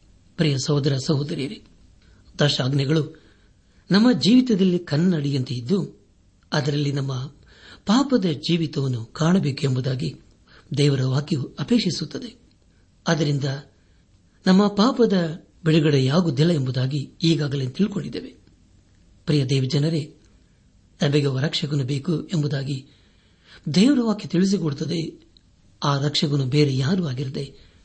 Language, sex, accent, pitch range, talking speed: Kannada, male, native, 120-170 Hz, 85 wpm